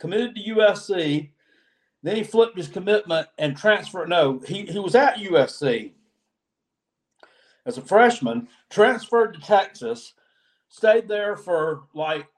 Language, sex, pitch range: English, male, 145-195 Hz